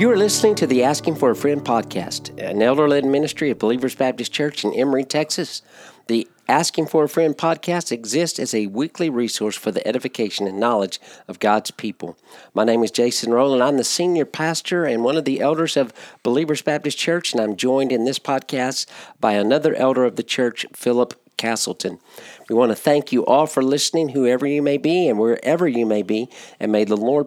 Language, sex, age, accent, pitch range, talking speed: English, male, 50-69, American, 115-150 Hz, 200 wpm